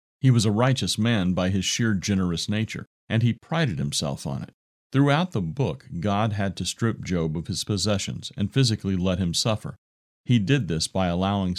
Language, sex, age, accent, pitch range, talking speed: English, male, 40-59, American, 90-115 Hz, 190 wpm